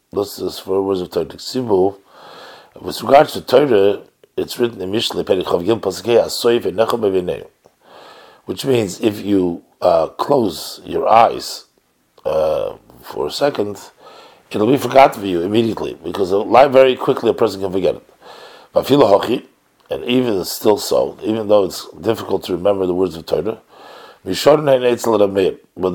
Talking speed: 125 wpm